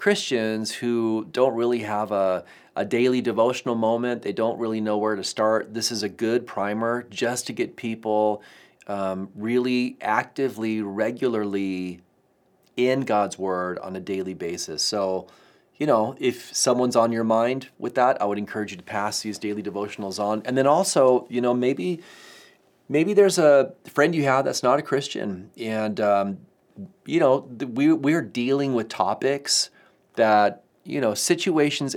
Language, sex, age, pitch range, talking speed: English, male, 30-49, 105-130 Hz, 165 wpm